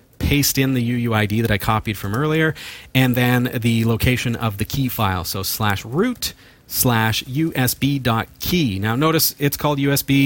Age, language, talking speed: 40-59, English, 170 wpm